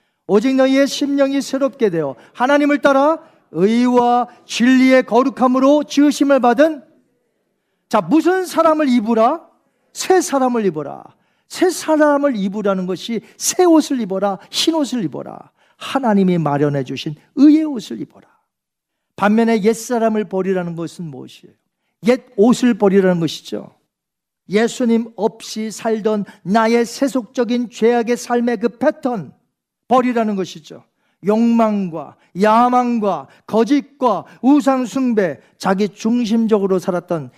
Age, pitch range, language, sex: 40-59, 195-260 Hz, Korean, male